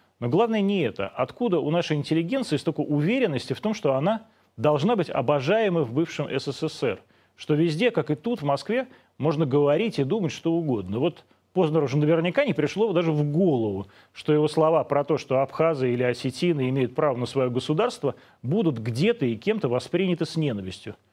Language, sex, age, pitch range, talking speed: Russian, male, 30-49, 130-190 Hz, 180 wpm